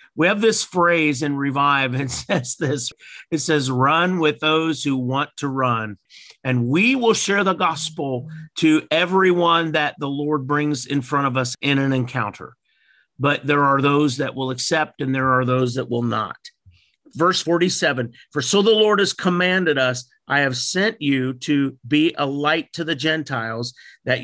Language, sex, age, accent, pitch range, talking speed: English, male, 50-69, American, 130-165 Hz, 180 wpm